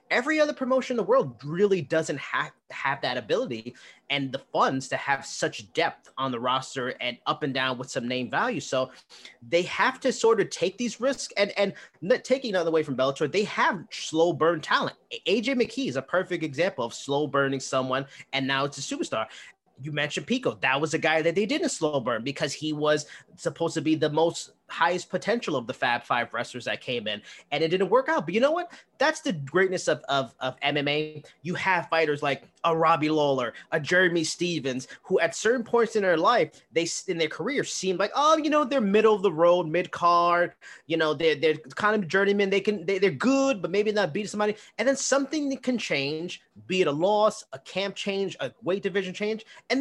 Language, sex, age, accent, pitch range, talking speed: English, male, 30-49, American, 150-215 Hz, 215 wpm